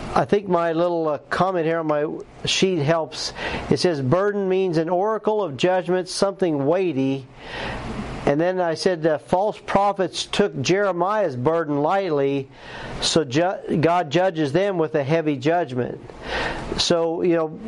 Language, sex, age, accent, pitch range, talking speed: English, male, 50-69, American, 150-185 Hz, 145 wpm